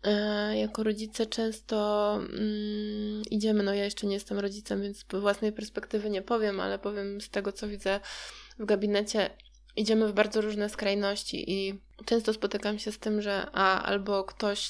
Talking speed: 160 wpm